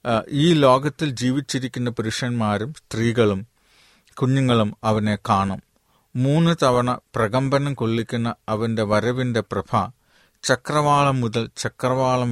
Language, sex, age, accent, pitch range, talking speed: Malayalam, male, 40-59, native, 110-135 Hz, 80 wpm